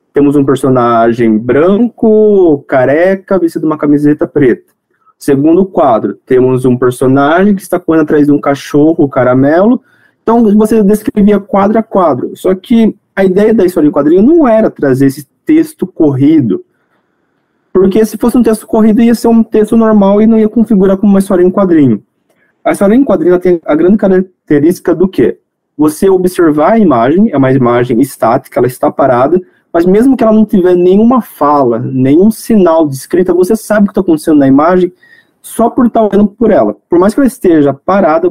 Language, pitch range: Portuguese, 145-210 Hz